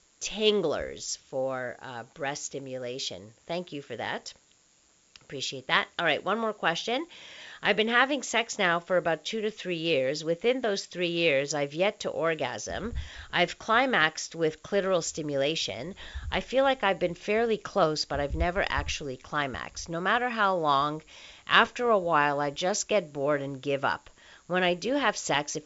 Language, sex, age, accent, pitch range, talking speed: English, female, 50-69, American, 145-200 Hz, 170 wpm